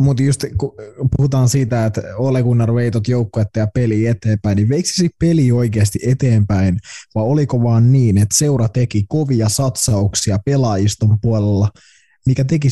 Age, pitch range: 20-39, 110-135 Hz